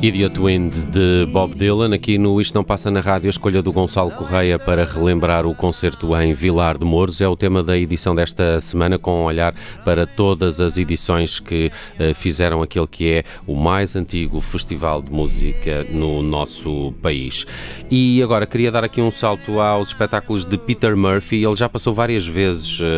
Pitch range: 80-95 Hz